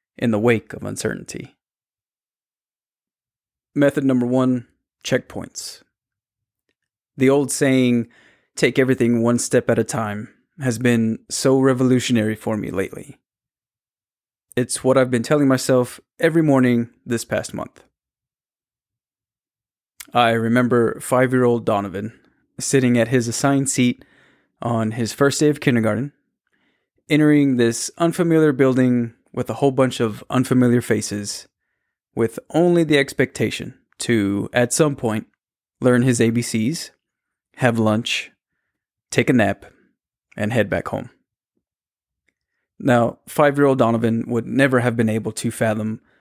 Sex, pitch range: male, 115-130 Hz